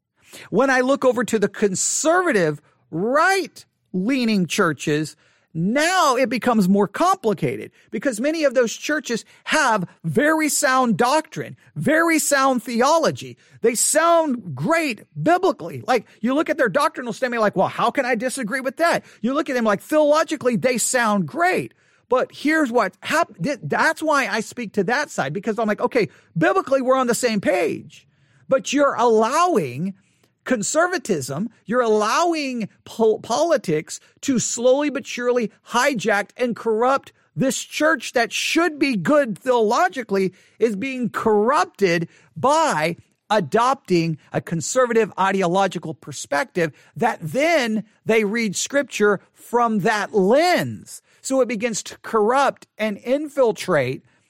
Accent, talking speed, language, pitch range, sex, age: American, 135 wpm, English, 200-285 Hz, male, 40-59